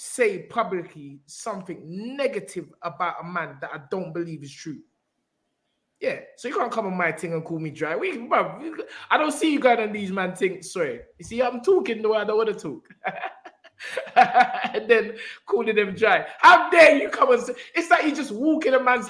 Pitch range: 170-275 Hz